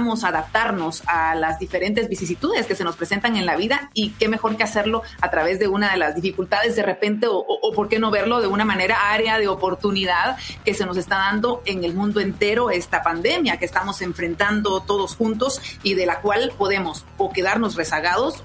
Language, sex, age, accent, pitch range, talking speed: Spanish, female, 40-59, Mexican, 180-215 Hz, 205 wpm